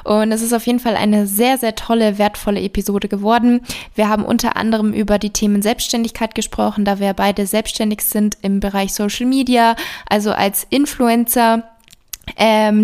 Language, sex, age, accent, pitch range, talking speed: German, female, 20-39, German, 210-245 Hz, 165 wpm